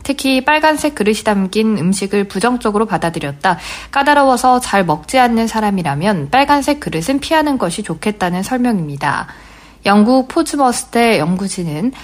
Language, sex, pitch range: Korean, female, 180-255 Hz